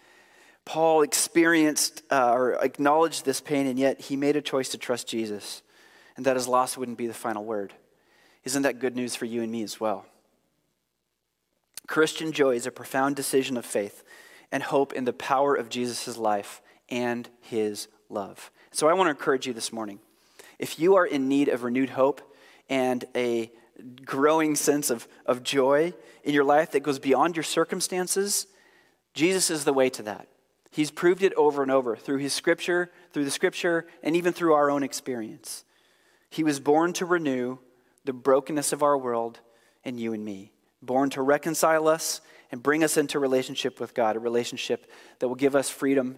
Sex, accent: male, American